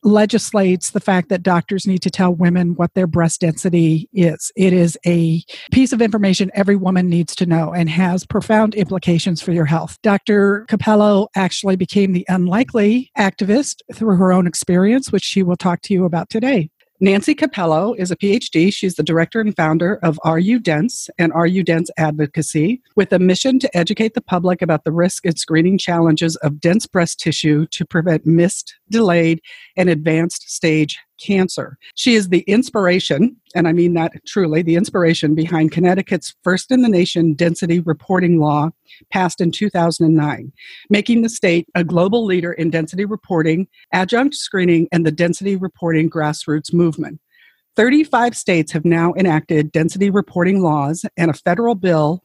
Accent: American